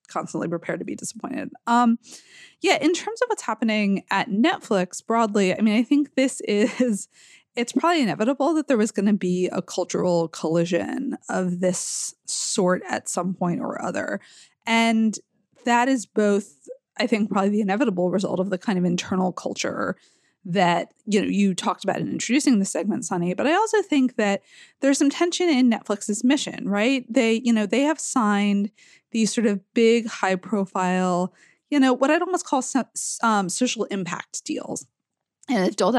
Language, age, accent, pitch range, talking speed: English, 20-39, American, 195-260 Hz, 175 wpm